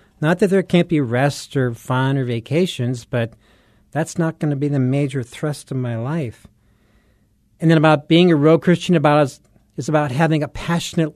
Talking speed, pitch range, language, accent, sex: 190 wpm, 120-155 Hz, English, American, male